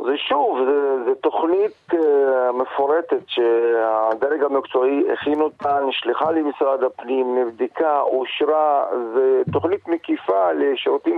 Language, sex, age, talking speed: Hebrew, male, 50-69, 100 wpm